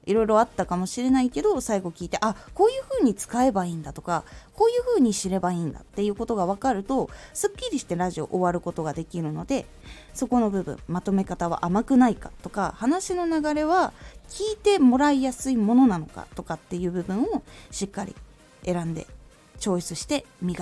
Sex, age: female, 20-39